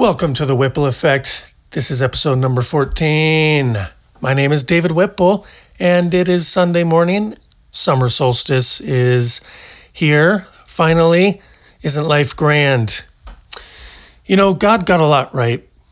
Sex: male